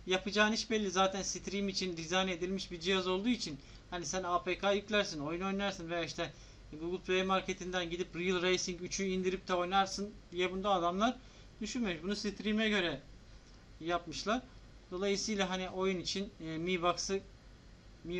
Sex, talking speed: male, 150 wpm